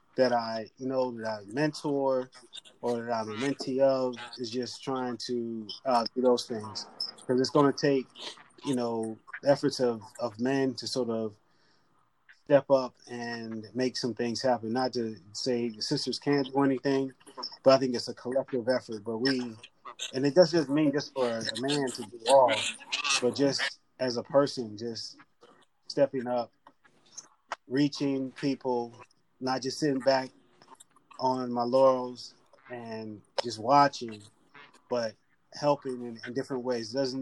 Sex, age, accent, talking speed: male, 30-49, American, 160 wpm